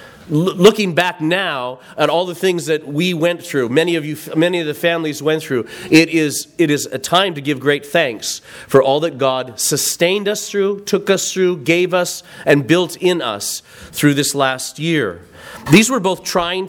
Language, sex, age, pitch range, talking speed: English, male, 40-59, 145-180 Hz, 195 wpm